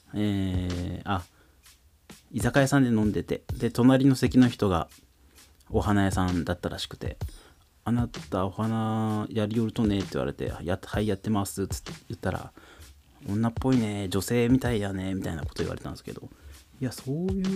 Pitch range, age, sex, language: 85-110 Hz, 30-49, male, Japanese